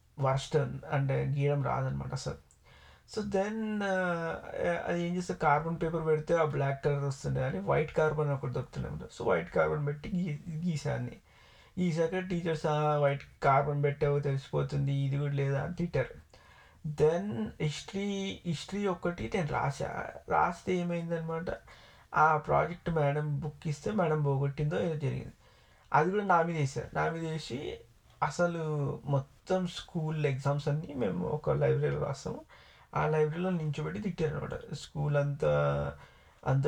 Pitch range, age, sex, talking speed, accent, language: 140-170 Hz, 30-49, male, 125 wpm, native, Telugu